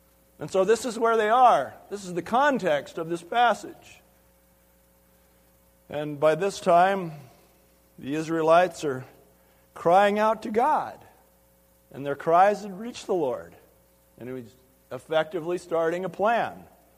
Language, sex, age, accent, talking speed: English, male, 50-69, American, 140 wpm